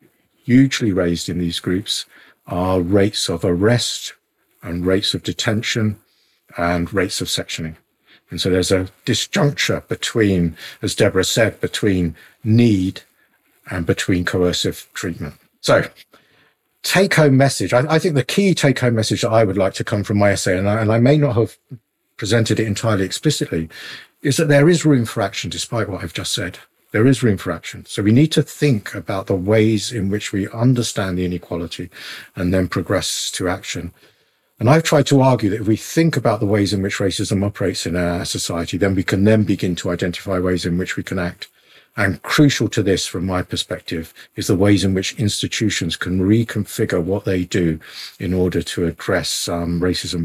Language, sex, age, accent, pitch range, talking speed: English, male, 50-69, British, 90-115 Hz, 185 wpm